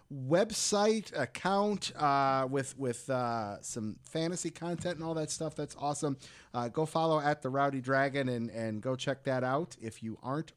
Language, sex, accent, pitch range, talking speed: English, male, American, 130-170 Hz, 175 wpm